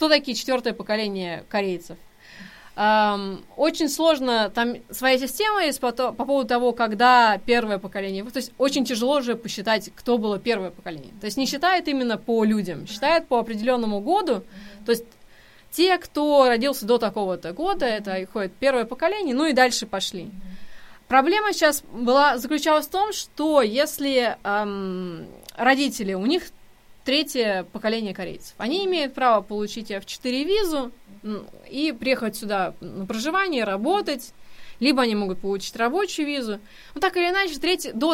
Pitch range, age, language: 210-290 Hz, 20-39, Korean